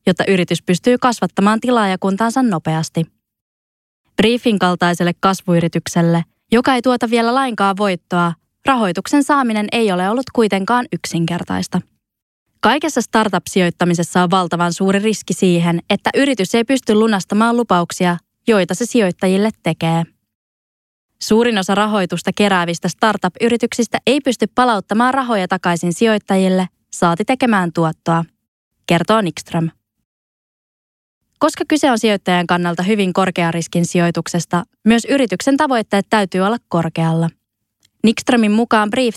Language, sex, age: Finnish, female, 20-39